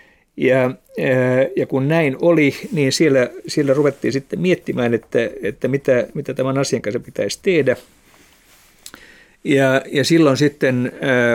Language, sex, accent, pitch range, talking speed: Finnish, male, native, 125-140 Hz, 125 wpm